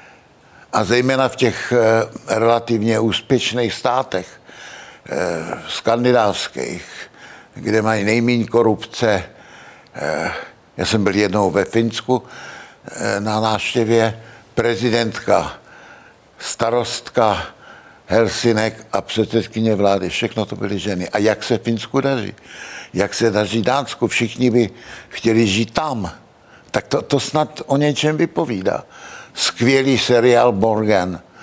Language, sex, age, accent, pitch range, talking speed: Czech, male, 60-79, native, 105-120 Hz, 105 wpm